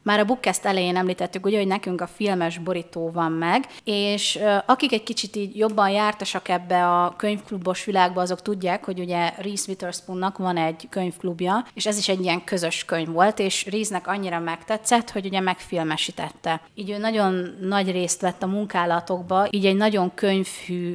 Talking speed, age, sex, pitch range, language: 170 wpm, 30-49, female, 175-200 Hz, Hungarian